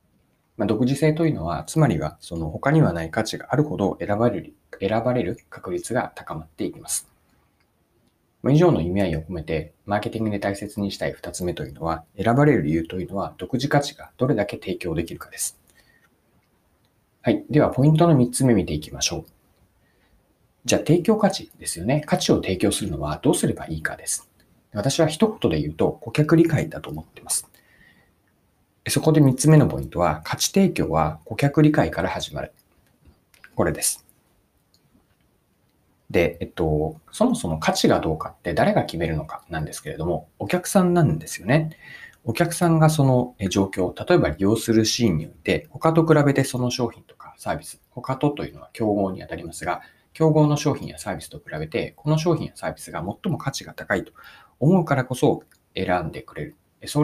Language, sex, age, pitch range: Japanese, male, 40-59, 100-155 Hz